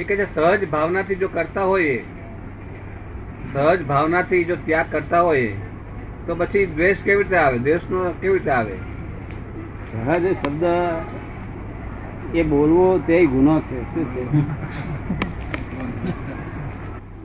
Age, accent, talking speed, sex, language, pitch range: 60-79, native, 55 wpm, male, Gujarati, 105-160 Hz